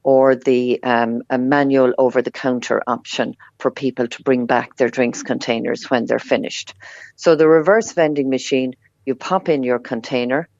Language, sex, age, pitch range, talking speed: English, female, 50-69, 125-145 Hz, 160 wpm